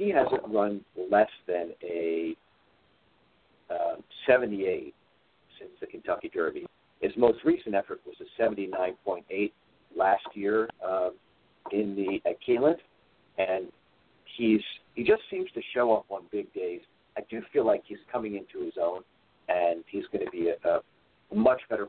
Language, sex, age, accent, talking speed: English, male, 50-69, American, 150 wpm